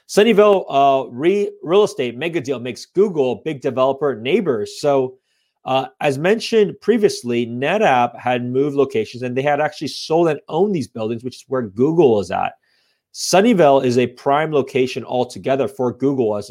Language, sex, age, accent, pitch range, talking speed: English, male, 30-49, American, 120-145 Hz, 160 wpm